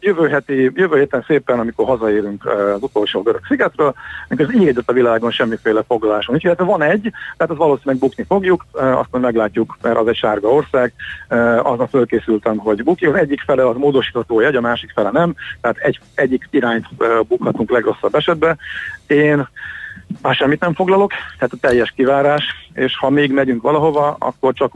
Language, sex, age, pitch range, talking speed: Hungarian, male, 50-69, 115-145 Hz, 170 wpm